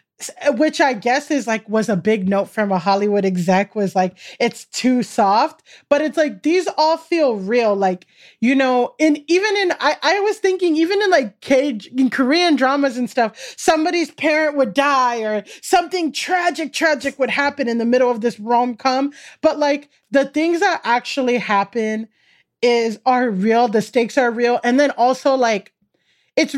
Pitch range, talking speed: 225-290 Hz, 180 wpm